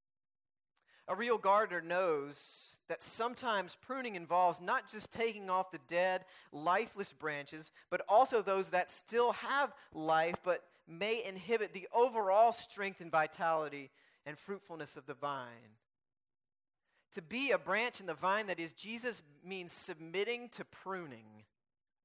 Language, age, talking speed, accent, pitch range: English, 30-49, 135 wpm, American, 155-200 Hz